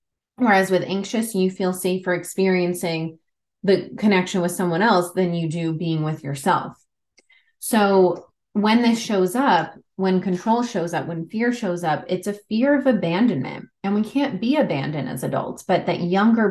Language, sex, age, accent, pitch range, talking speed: English, female, 20-39, American, 170-215 Hz, 165 wpm